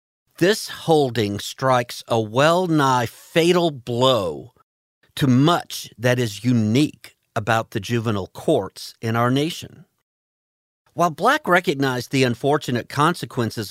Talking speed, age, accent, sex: 110 wpm, 50-69, American, male